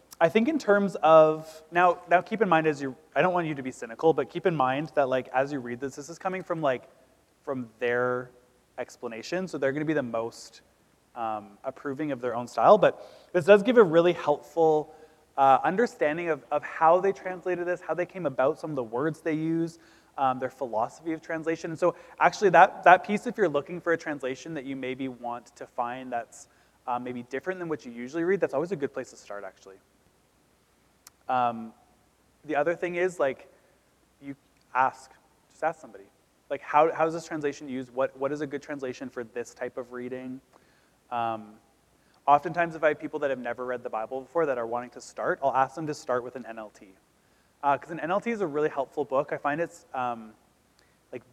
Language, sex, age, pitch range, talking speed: English, male, 20-39, 125-165 Hz, 215 wpm